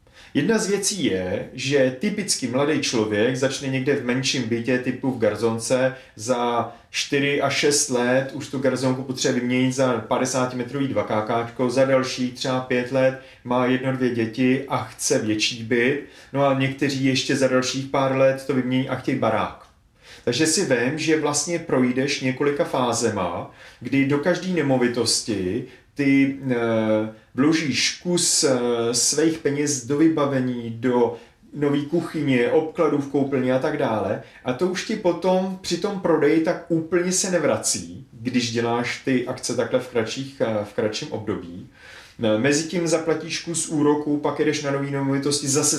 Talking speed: 150 wpm